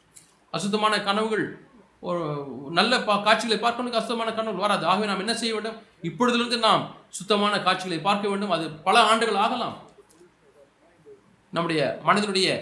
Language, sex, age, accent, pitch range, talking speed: Tamil, male, 30-49, native, 175-210 Hz, 125 wpm